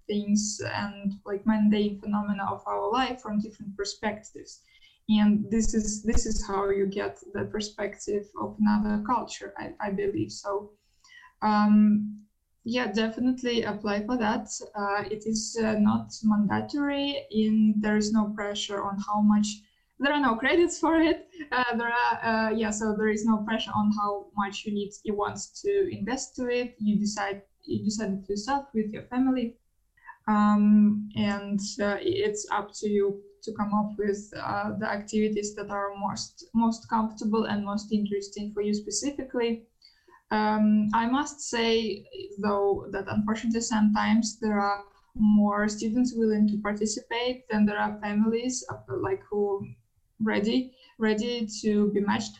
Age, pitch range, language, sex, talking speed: 20-39, 205-230 Hz, Finnish, female, 155 wpm